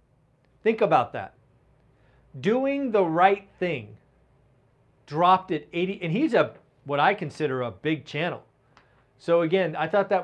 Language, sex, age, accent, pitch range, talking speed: English, male, 40-59, American, 135-180 Hz, 140 wpm